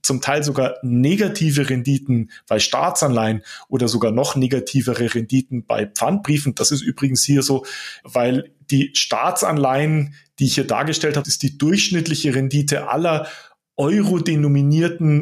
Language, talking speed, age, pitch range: German, 130 wpm, 30-49, 135-165 Hz